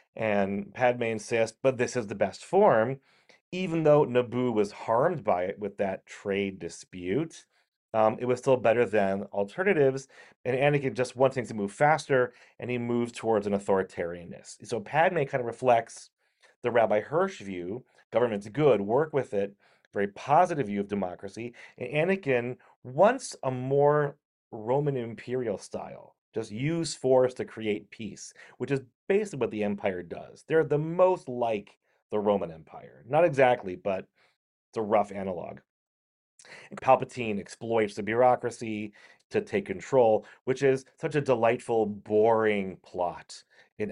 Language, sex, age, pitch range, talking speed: English, male, 30-49, 100-135 Hz, 150 wpm